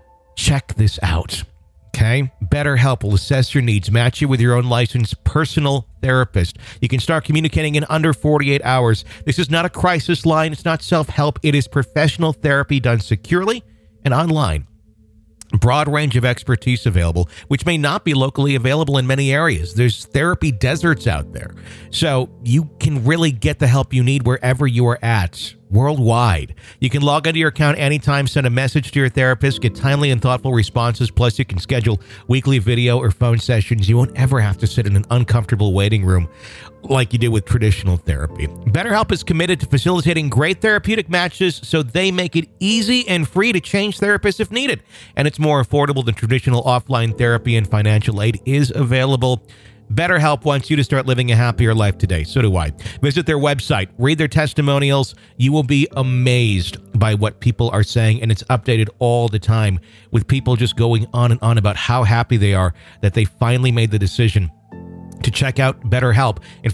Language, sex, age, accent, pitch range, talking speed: English, male, 50-69, American, 110-145 Hz, 190 wpm